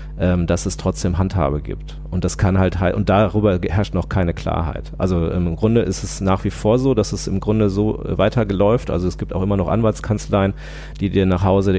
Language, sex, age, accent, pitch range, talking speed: German, male, 40-59, German, 90-110 Hz, 210 wpm